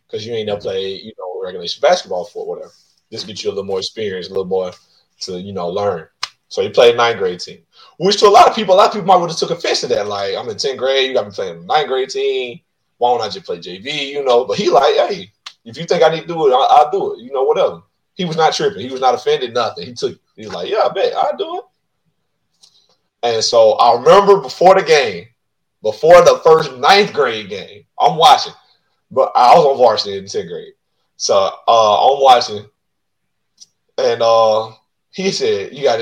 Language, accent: English, American